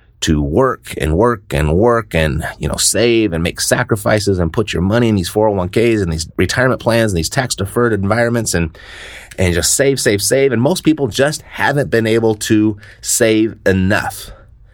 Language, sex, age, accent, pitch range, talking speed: English, male, 30-49, American, 95-120 Hz, 185 wpm